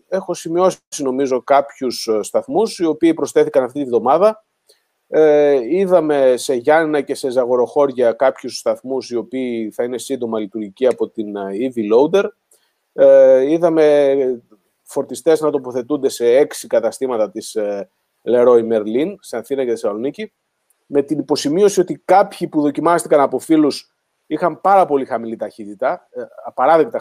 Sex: male